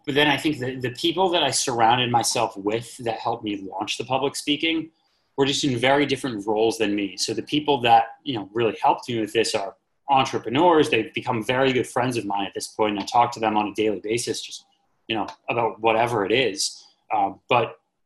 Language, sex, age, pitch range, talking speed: English, male, 30-49, 110-135 Hz, 225 wpm